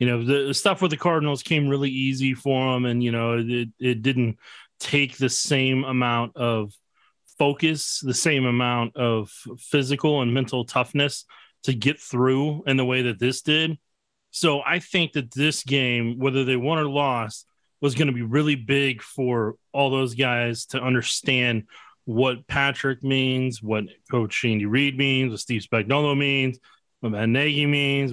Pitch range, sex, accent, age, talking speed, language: 120-145 Hz, male, American, 30-49, 170 wpm, English